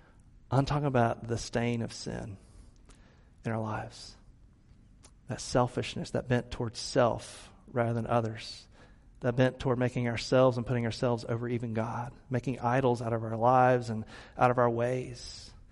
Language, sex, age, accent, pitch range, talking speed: English, male, 40-59, American, 115-150 Hz, 155 wpm